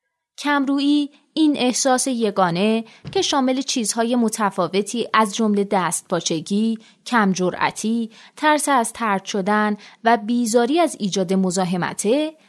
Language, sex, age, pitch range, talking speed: Persian, female, 30-49, 205-270 Hz, 105 wpm